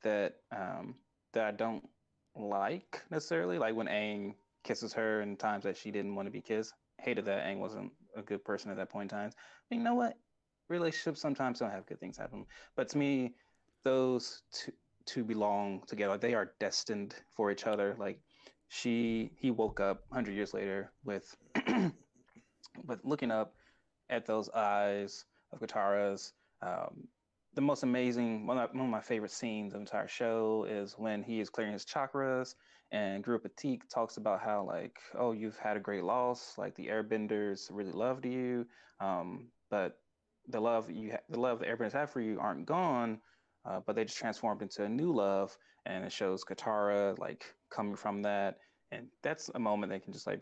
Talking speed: 180 wpm